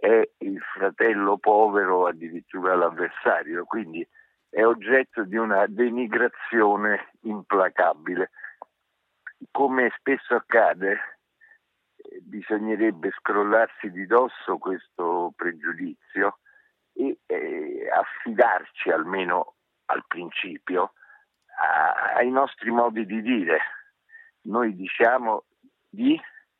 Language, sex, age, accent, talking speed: Italian, male, 60-79, native, 85 wpm